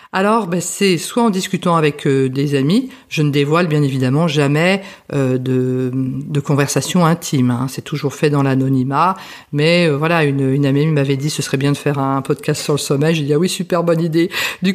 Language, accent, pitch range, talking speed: French, French, 145-185 Hz, 220 wpm